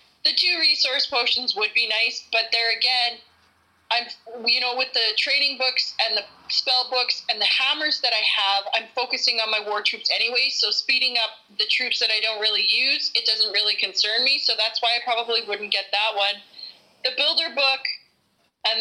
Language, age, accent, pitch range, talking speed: English, 30-49, American, 220-270 Hz, 200 wpm